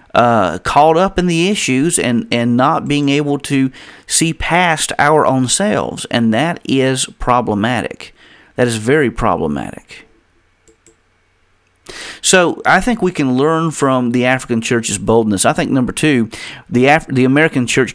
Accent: American